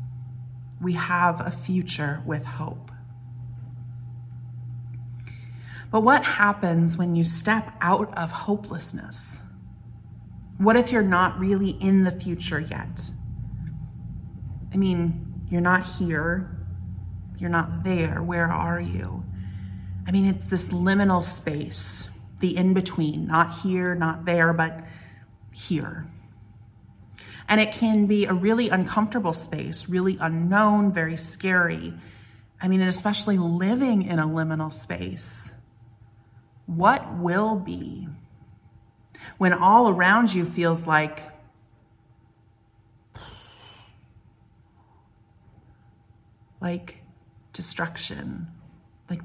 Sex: female